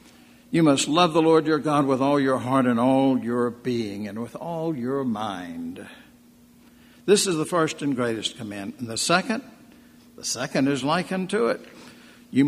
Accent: American